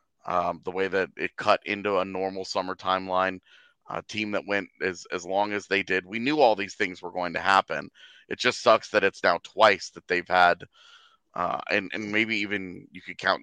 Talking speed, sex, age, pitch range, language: 215 wpm, male, 30-49, 95-110 Hz, English